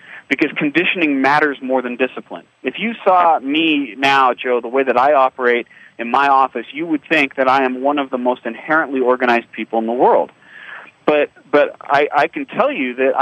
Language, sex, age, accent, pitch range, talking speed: English, male, 30-49, American, 125-160 Hz, 200 wpm